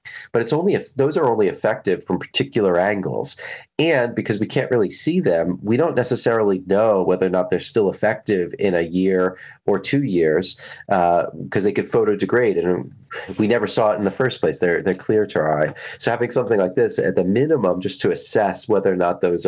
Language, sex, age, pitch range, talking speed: English, male, 30-49, 90-115 Hz, 215 wpm